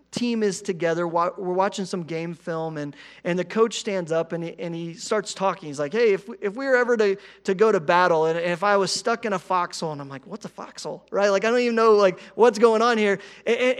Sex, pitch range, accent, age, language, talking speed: male, 160-220 Hz, American, 30-49, English, 270 wpm